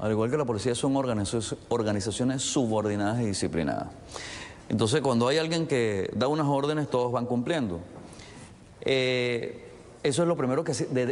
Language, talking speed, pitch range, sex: English, 150 wpm, 105-140 Hz, male